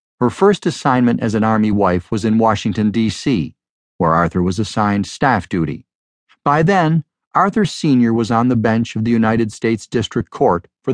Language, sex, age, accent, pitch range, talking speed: English, male, 50-69, American, 110-140 Hz, 175 wpm